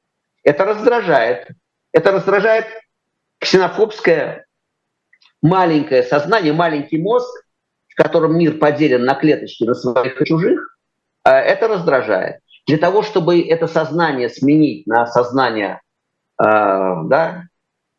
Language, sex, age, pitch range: Russian, male, 50-69, 130-195 Hz